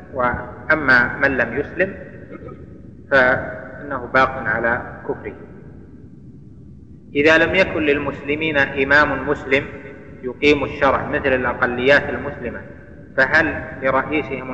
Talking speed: 85 wpm